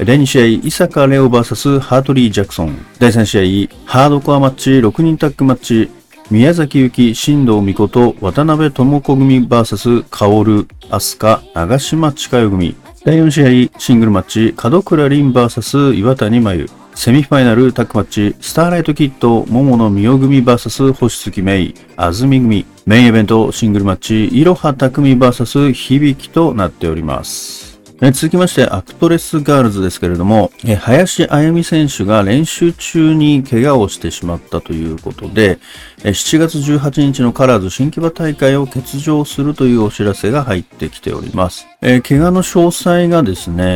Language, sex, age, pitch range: Japanese, male, 40-59, 105-145 Hz